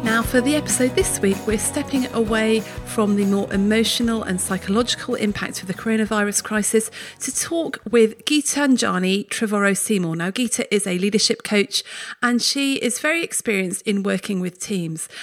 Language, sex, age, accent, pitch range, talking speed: English, female, 40-59, British, 200-240 Hz, 160 wpm